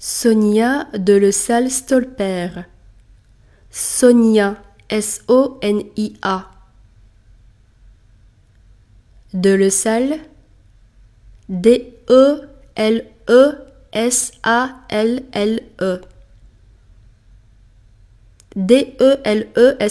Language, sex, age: Chinese, female, 20-39